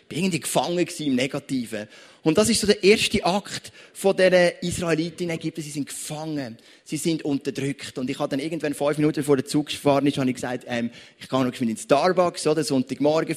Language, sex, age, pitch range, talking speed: German, male, 30-49, 145-185 Hz, 200 wpm